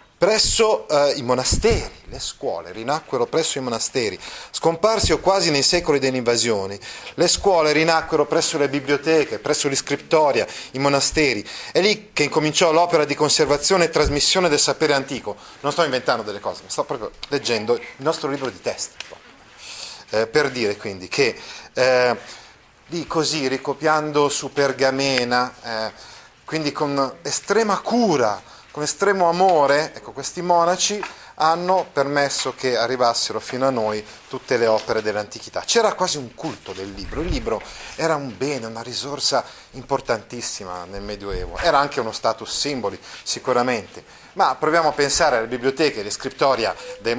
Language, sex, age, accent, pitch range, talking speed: Italian, male, 30-49, native, 125-155 Hz, 150 wpm